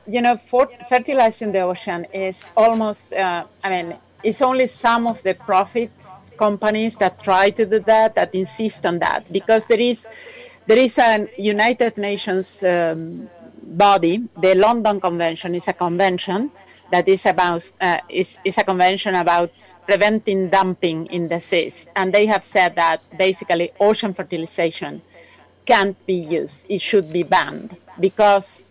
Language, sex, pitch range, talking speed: English, female, 175-215 Hz, 155 wpm